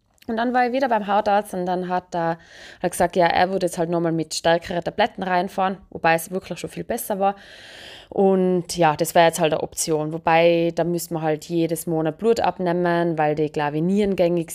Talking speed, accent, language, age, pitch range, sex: 205 wpm, German, German, 20-39, 170-210 Hz, female